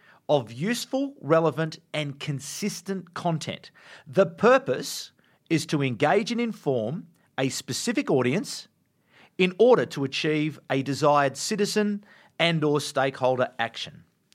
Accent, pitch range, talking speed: Australian, 140-195 Hz, 115 wpm